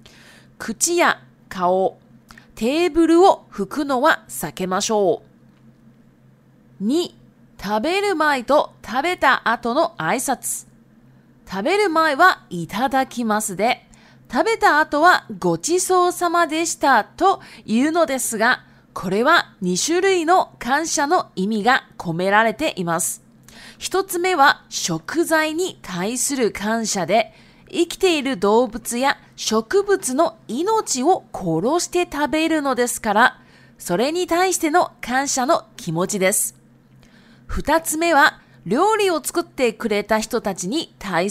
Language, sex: Japanese, female